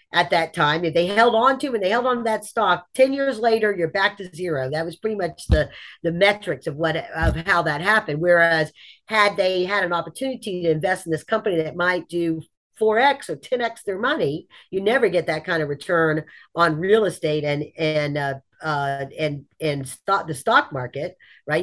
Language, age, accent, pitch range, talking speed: English, 50-69, American, 155-200 Hz, 205 wpm